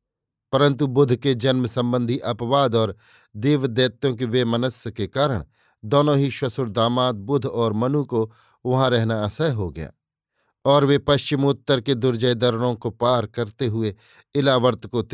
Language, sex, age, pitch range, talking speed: Hindi, male, 50-69, 115-135 Hz, 65 wpm